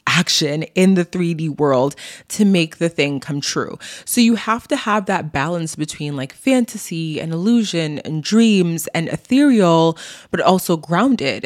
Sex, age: female, 20-39